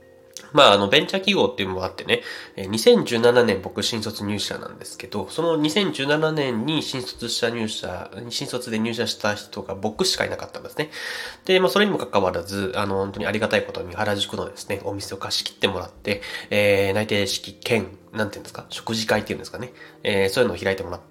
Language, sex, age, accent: Japanese, male, 20-39, native